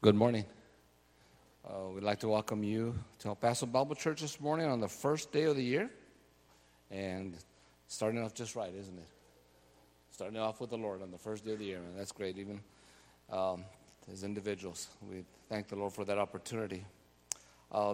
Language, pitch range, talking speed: English, 100-125 Hz, 185 wpm